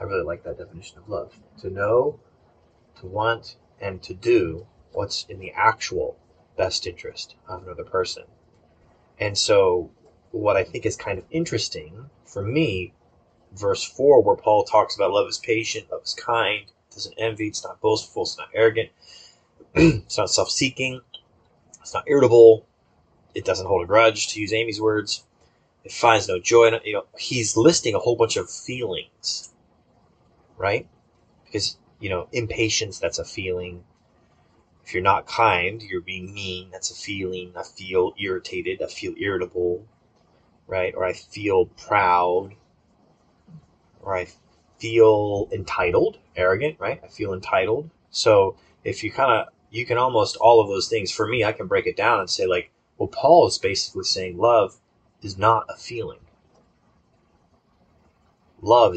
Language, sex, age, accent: English, male, 30-49, American